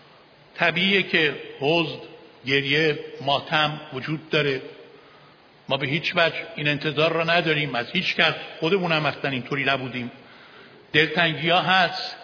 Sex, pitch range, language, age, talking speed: male, 150-245 Hz, Persian, 50-69, 125 wpm